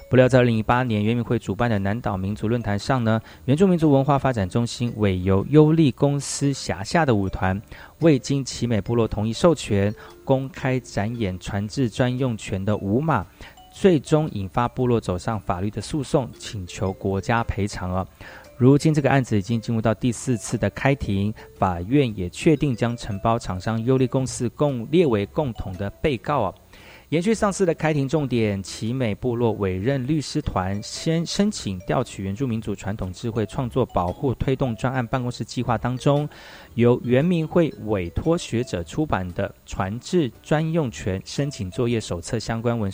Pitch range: 100-140 Hz